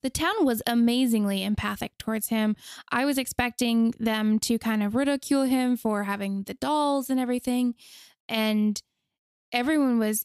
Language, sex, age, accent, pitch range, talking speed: English, female, 10-29, American, 215-240 Hz, 145 wpm